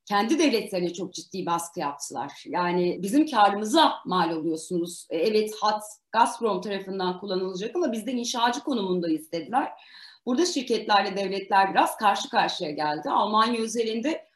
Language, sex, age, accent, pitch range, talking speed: Turkish, female, 40-59, native, 180-245 Hz, 130 wpm